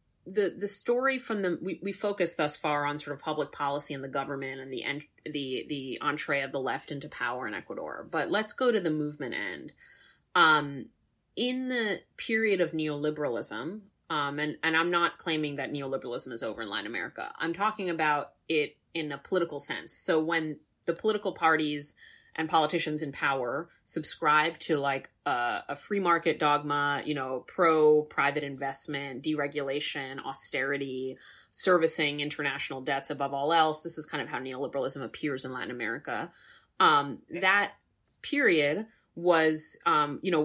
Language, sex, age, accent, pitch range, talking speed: English, female, 30-49, American, 140-170 Hz, 165 wpm